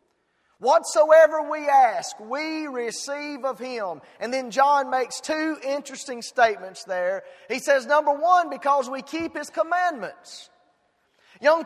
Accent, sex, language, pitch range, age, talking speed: American, male, English, 250-310 Hz, 30-49, 130 wpm